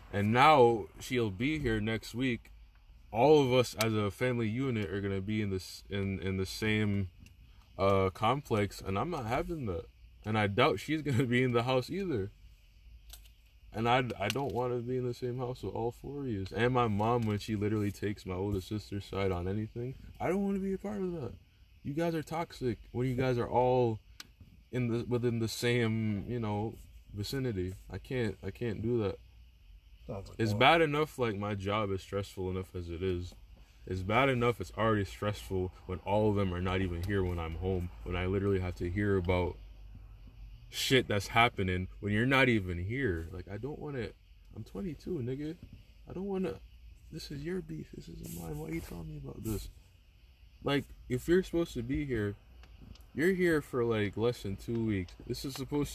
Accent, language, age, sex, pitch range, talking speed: American, English, 20-39, male, 95-125 Hz, 205 wpm